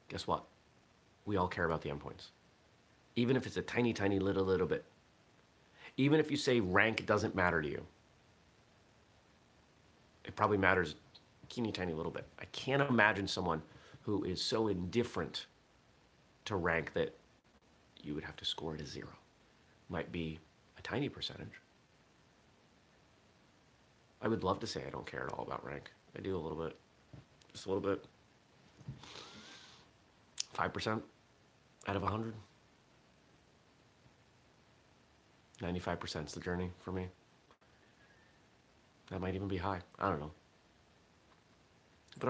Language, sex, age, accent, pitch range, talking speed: English, male, 30-49, American, 85-110 Hz, 140 wpm